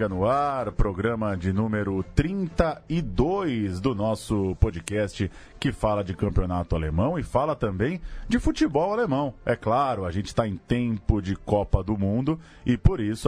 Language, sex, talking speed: Portuguese, male, 155 wpm